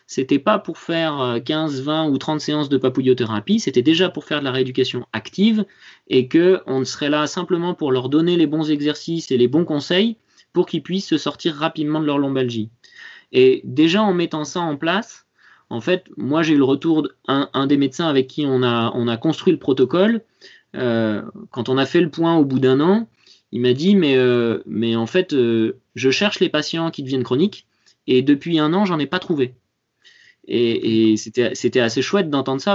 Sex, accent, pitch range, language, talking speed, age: male, French, 130-170 Hz, French, 205 wpm, 30-49